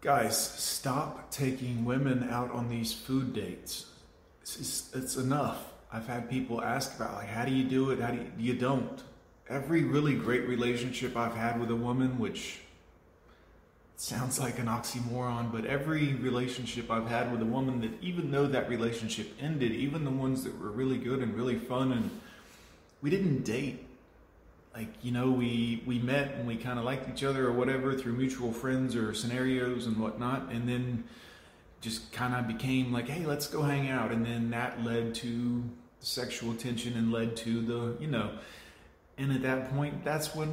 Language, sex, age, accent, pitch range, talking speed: English, male, 30-49, American, 115-130 Hz, 185 wpm